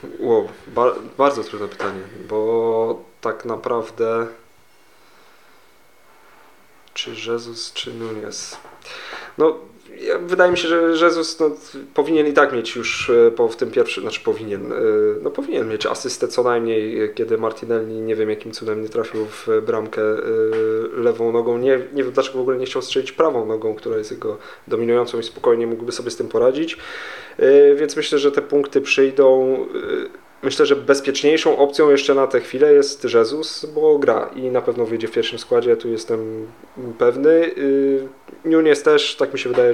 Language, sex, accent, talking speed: Polish, male, native, 155 wpm